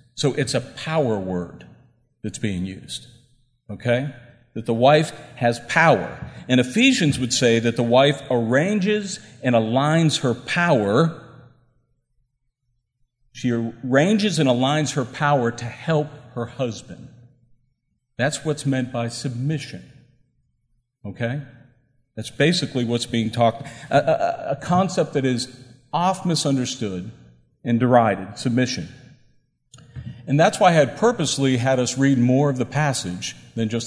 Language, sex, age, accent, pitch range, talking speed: English, male, 50-69, American, 120-145 Hz, 130 wpm